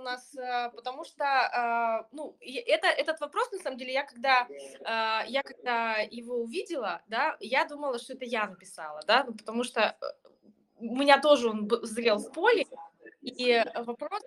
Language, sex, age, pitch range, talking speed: Russian, female, 20-39, 220-300 Hz, 150 wpm